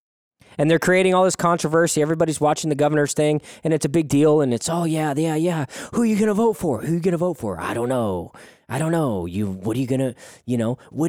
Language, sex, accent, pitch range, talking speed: English, male, American, 120-160 Hz, 275 wpm